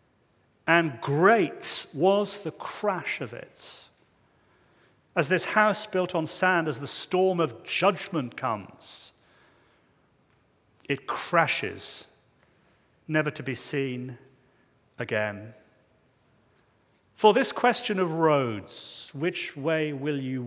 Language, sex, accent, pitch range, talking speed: English, male, British, 145-200 Hz, 105 wpm